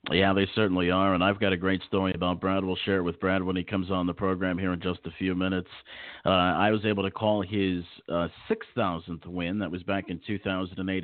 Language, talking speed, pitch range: English, 240 wpm, 90-105 Hz